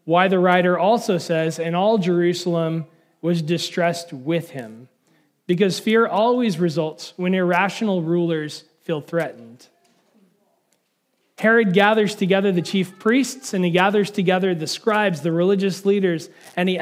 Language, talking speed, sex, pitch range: English, 135 wpm, male, 170-205 Hz